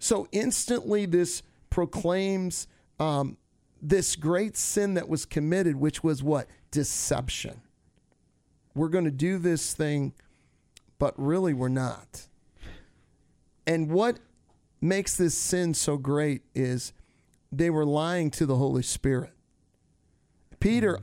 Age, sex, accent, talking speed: 40-59, male, American, 115 wpm